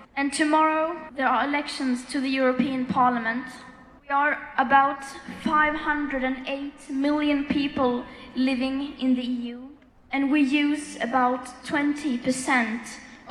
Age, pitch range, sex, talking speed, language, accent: 20-39, 245-280 Hz, female, 110 wpm, Danish, Norwegian